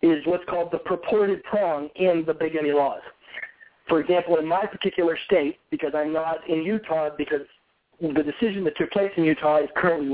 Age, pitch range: 40-59, 155-225 Hz